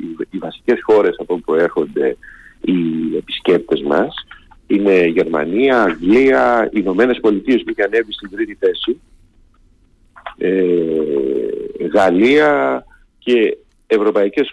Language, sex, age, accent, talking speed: Greek, male, 50-69, native, 95 wpm